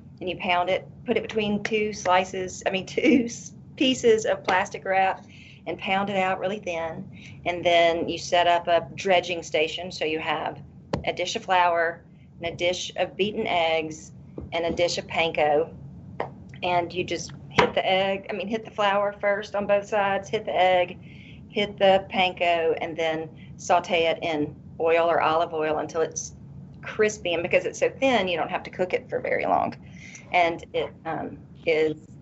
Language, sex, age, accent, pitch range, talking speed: English, female, 40-59, American, 165-200 Hz, 185 wpm